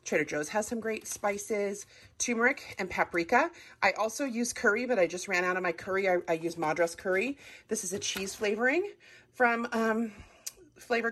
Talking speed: 185 wpm